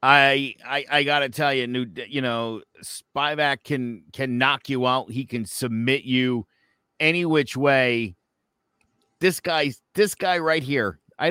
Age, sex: 50-69, male